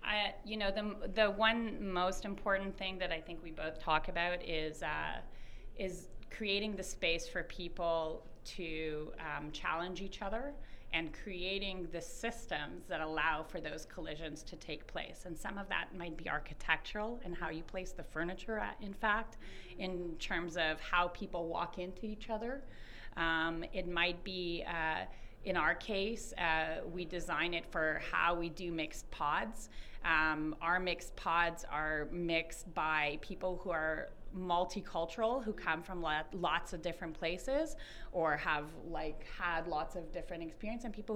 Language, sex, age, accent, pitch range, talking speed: English, female, 30-49, American, 160-190 Hz, 165 wpm